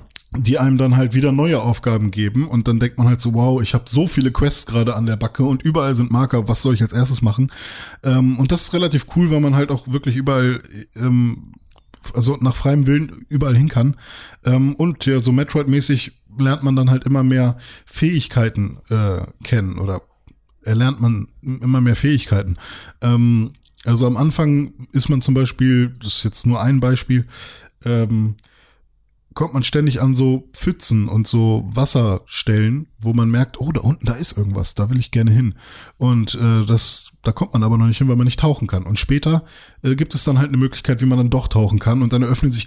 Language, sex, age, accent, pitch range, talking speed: German, male, 20-39, German, 115-140 Hz, 205 wpm